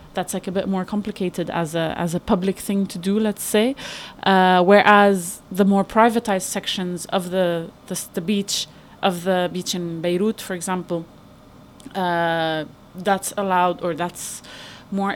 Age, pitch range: 20-39, 180-205 Hz